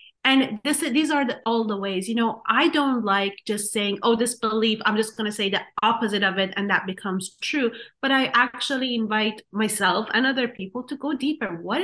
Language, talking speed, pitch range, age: English, 220 wpm, 185-230 Hz, 30-49